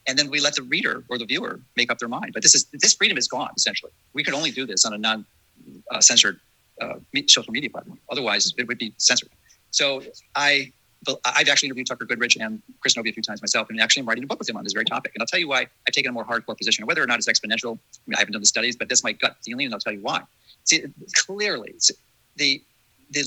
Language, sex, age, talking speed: English, male, 40-59, 265 wpm